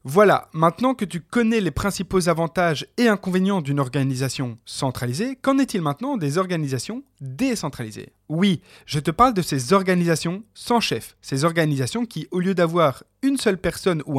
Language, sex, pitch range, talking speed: French, male, 135-200 Hz, 160 wpm